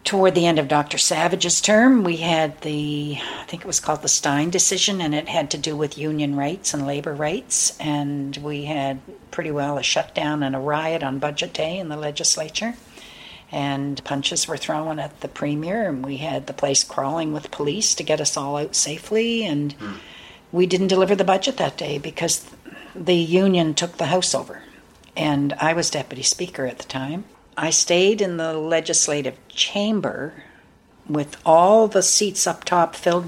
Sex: female